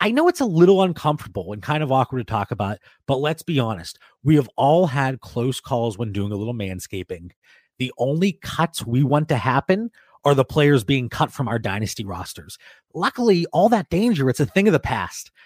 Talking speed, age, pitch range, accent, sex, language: 210 wpm, 30-49, 115-170 Hz, American, male, English